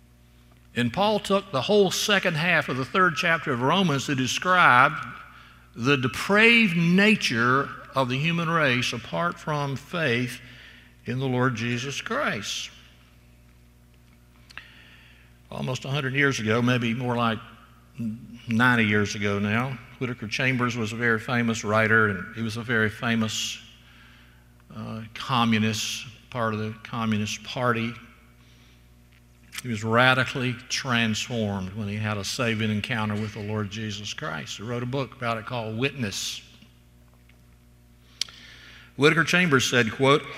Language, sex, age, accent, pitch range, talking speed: English, male, 60-79, American, 100-130 Hz, 130 wpm